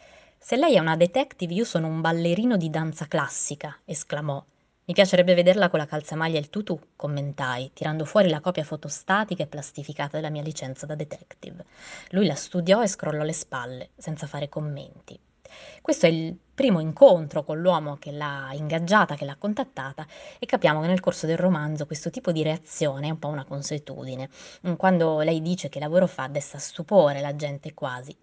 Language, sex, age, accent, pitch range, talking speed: Italian, female, 20-39, native, 145-185 Hz, 180 wpm